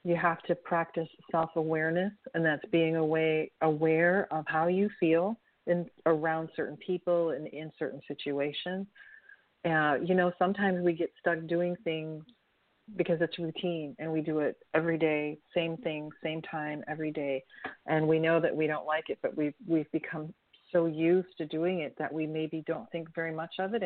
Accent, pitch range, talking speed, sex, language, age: American, 155-180 Hz, 185 wpm, female, English, 40-59